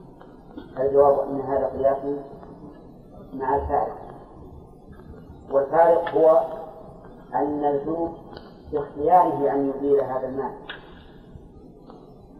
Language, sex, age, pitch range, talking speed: Arabic, female, 40-59, 140-150 Hz, 75 wpm